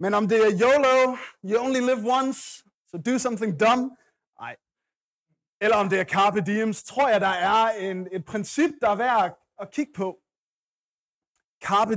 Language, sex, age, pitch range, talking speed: Danish, male, 30-49, 175-230 Hz, 175 wpm